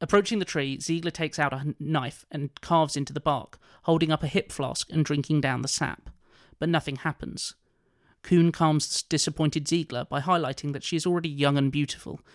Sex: male